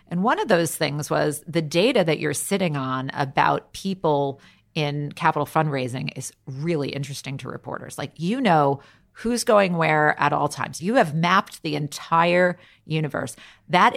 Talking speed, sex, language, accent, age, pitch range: 165 wpm, female, English, American, 40-59, 145-180 Hz